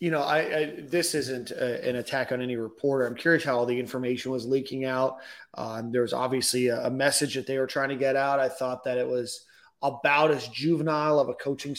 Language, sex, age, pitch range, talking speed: English, male, 30-49, 130-150 Hz, 235 wpm